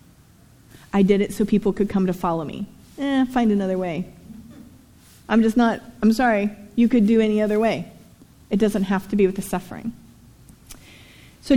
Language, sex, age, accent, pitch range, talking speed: English, female, 30-49, American, 200-270 Hz, 175 wpm